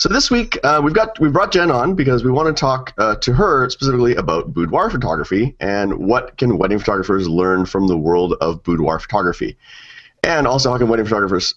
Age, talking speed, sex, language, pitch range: 30-49, 205 wpm, male, English, 90-125 Hz